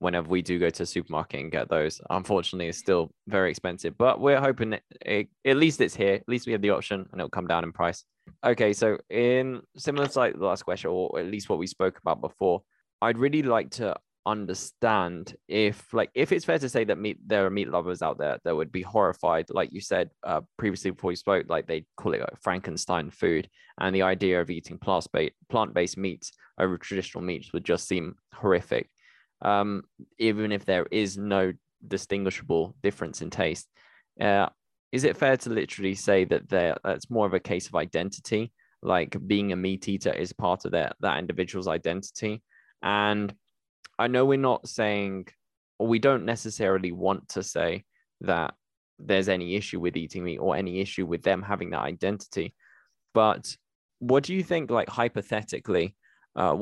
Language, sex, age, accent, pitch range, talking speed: English, male, 20-39, British, 95-115 Hz, 190 wpm